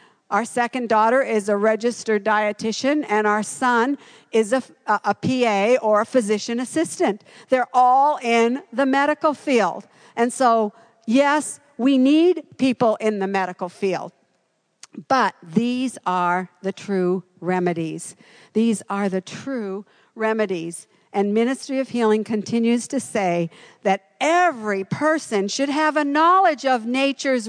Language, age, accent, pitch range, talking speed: English, 60-79, American, 230-315 Hz, 135 wpm